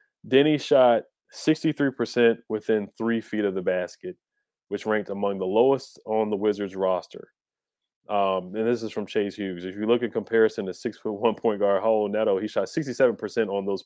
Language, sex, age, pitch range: English, male, 20-39, 95-115 Hz